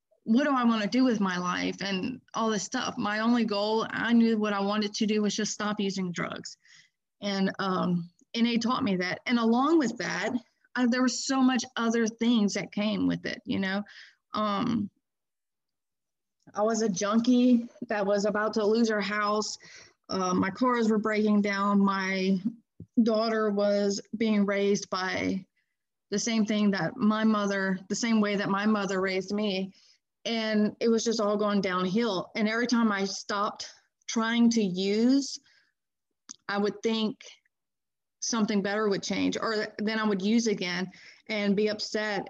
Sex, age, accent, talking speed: female, 30-49, American, 170 wpm